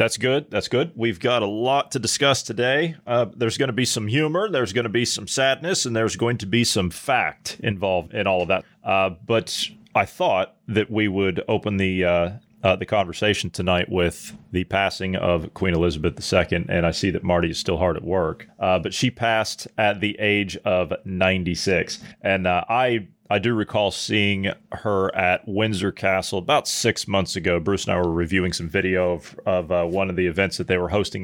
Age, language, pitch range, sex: 30-49, English, 90-110 Hz, male